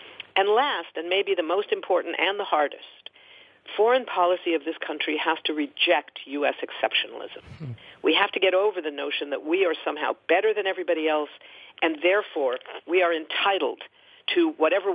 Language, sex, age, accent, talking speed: English, female, 50-69, American, 170 wpm